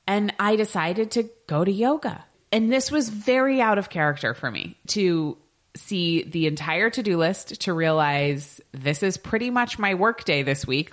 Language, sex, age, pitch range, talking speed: English, female, 20-39, 130-195 Hz, 180 wpm